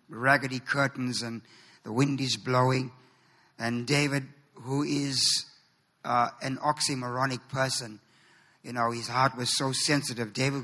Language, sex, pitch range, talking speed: English, male, 130-155 Hz, 130 wpm